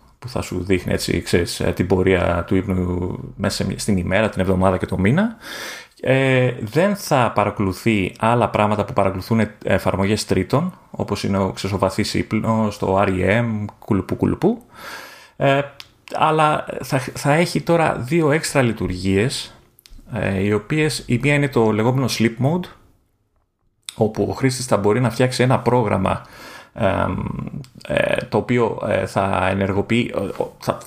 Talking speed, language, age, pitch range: 130 wpm, Greek, 30-49, 100-125 Hz